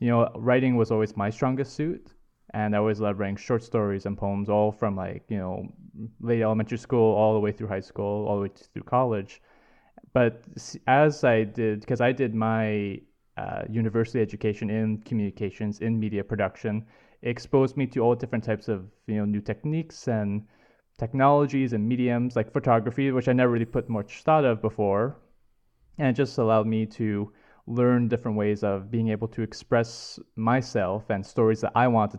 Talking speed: 185 wpm